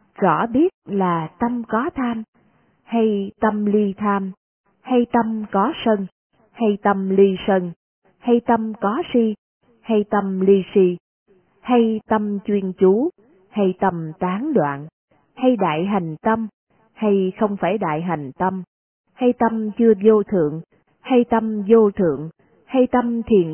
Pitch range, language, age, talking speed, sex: 175-230 Hz, Vietnamese, 20-39, 145 wpm, female